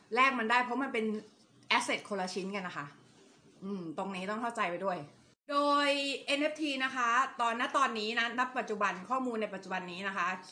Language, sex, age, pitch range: Thai, female, 30-49, 205-260 Hz